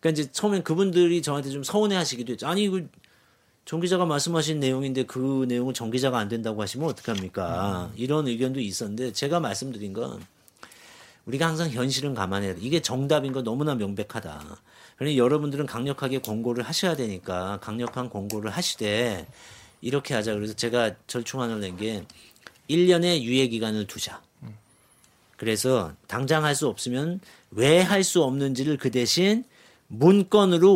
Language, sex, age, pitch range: Korean, male, 40-59, 120-165 Hz